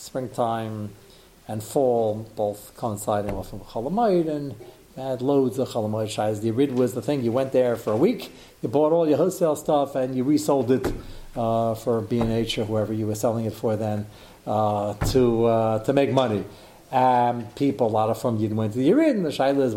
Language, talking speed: English, 200 wpm